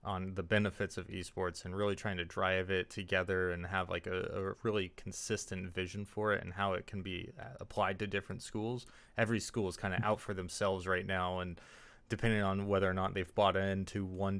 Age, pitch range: 20-39, 95-110 Hz